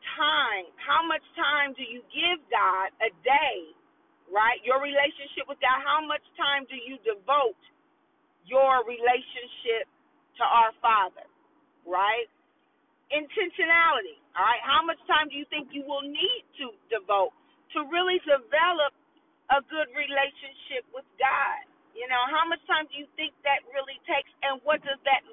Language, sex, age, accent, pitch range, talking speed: English, female, 40-59, American, 255-330 Hz, 150 wpm